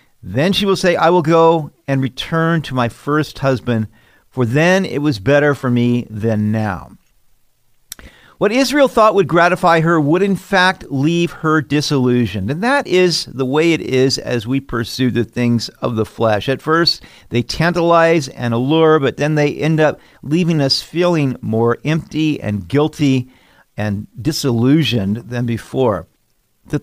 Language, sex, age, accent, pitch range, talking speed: English, male, 50-69, American, 120-175 Hz, 160 wpm